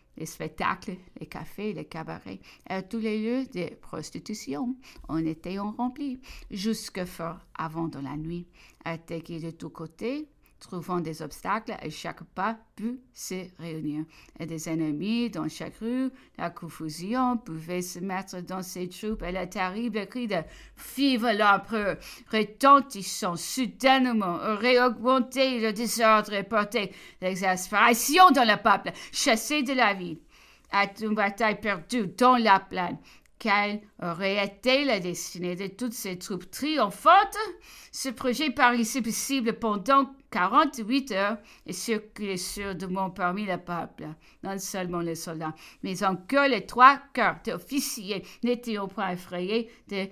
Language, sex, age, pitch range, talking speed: English, female, 50-69, 180-235 Hz, 145 wpm